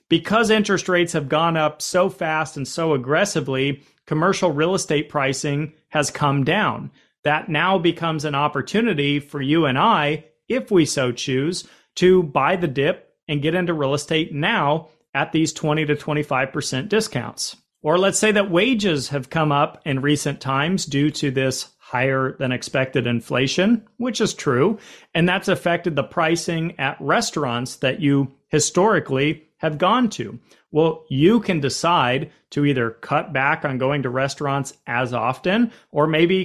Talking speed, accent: 155 wpm, American